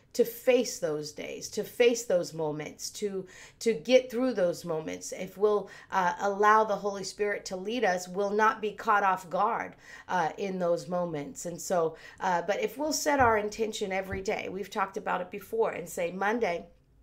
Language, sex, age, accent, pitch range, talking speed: English, female, 40-59, American, 180-245 Hz, 185 wpm